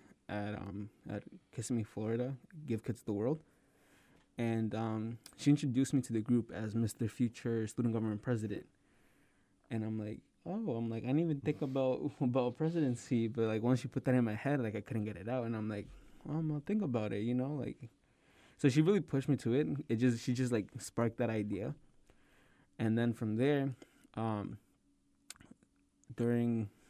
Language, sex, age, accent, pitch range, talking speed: English, male, 20-39, American, 110-125 Hz, 185 wpm